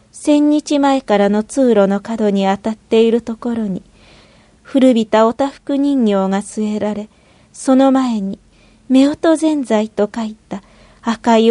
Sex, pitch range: female, 210-255 Hz